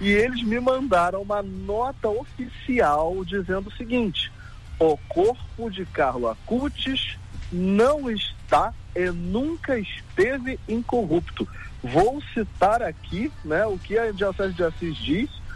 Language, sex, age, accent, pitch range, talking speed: Portuguese, male, 40-59, Brazilian, 145-230 Hz, 125 wpm